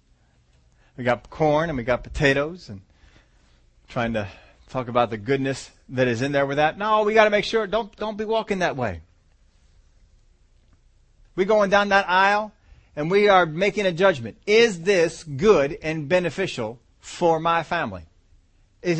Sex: male